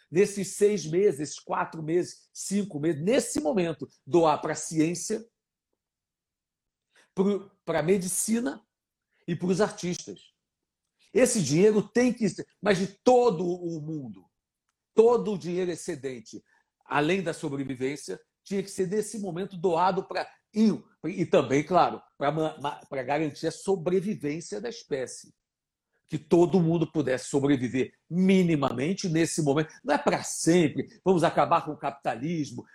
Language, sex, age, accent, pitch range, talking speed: Portuguese, male, 60-79, Brazilian, 155-205 Hz, 130 wpm